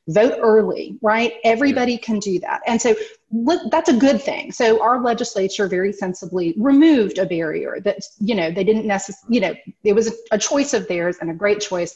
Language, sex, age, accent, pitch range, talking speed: English, female, 30-49, American, 180-240 Hz, 195 wpm